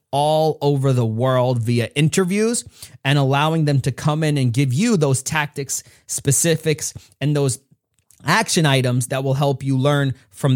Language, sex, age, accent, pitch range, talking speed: English, male, 30-49, American, 125-155 Hz, 160 wpm